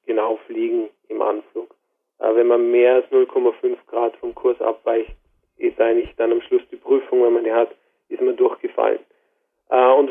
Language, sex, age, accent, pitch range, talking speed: German, male, 40-59, German, 345-435 Hz, 170 wpm